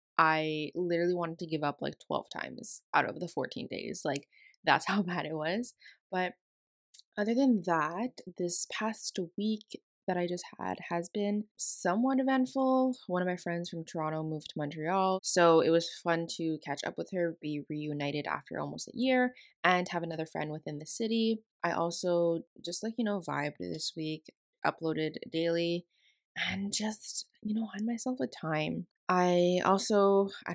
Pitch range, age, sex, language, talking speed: 165-210 Hz, 20-39, female, English, 175 wpm